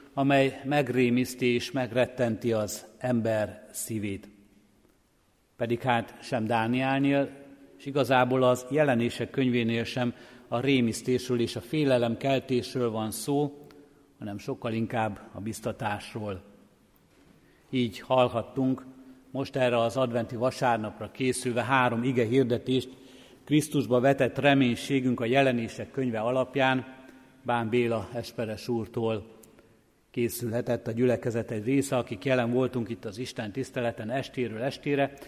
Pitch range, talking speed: 115-130 Hz, 110 wpm